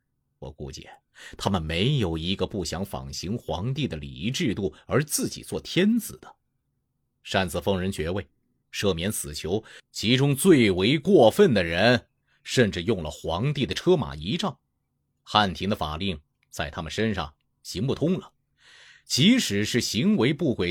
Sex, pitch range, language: male, 90-130 Hz, Chinese